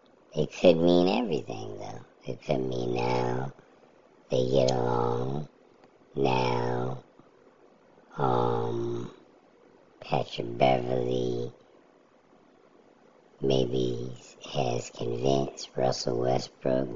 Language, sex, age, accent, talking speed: English, male, 50-69, American, 75 wpm